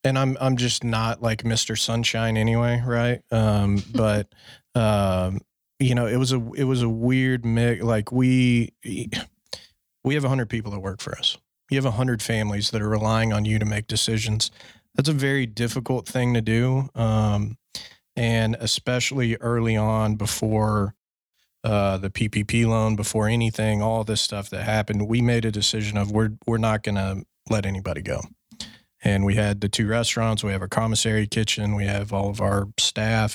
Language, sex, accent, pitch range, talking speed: English, male, American, 105-120 Hz, 180 wpm